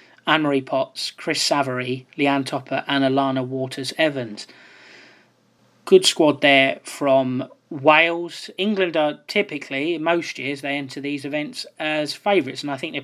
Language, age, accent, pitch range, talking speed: English, 30-49, British, 135-150 Hz, 140 wpm